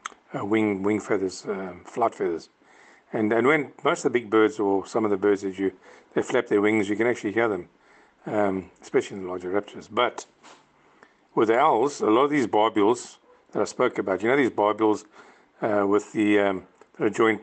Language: English